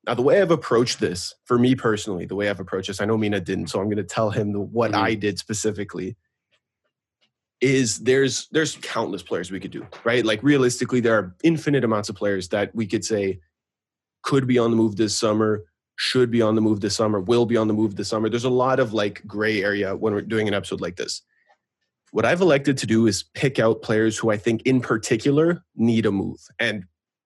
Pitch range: 105-125 Hz